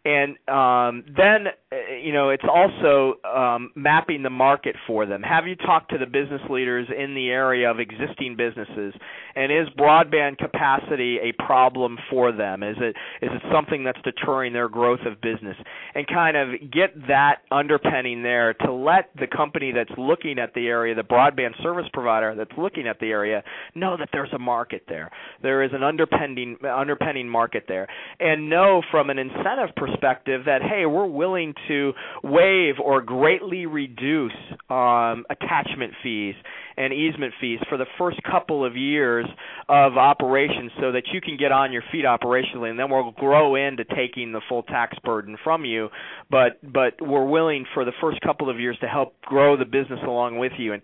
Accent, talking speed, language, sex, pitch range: American, 180 wpm, English, male, 120-150 Hz